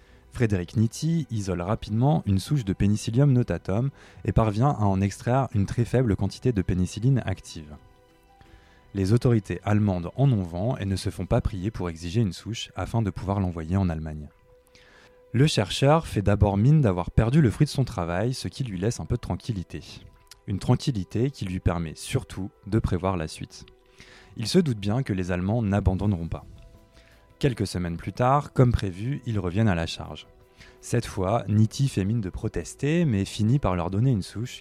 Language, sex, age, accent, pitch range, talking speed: French, male, 20-39, French, 95-120 Hz, 185 wpm